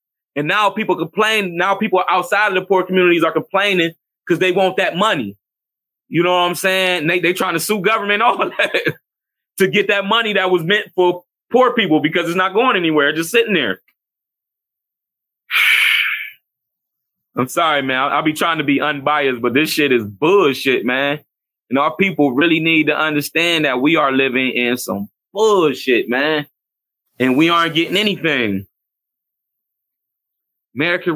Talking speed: 165 wpm